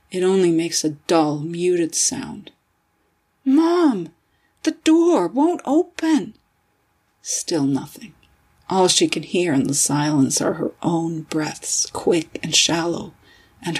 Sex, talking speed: female, 125 wpm